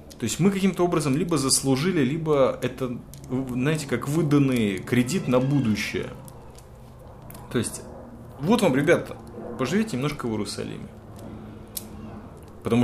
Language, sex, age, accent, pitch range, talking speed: Russian, male, 20-39, native, 100-140 Hz, 115 wpm